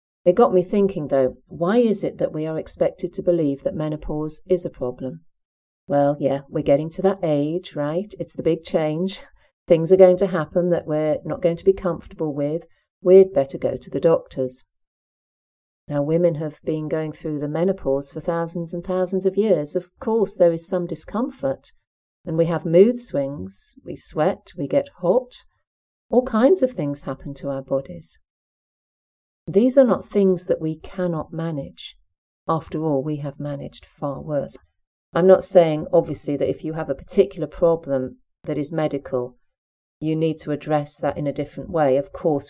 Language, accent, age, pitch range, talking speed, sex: English, British, 50-69, 145-180 Hz, 180 wpm, female